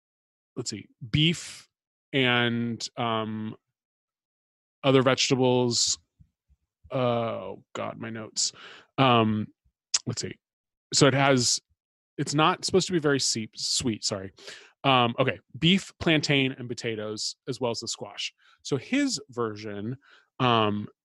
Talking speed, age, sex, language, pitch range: 115 wpm, 20-39, male, English, 115-135 Hz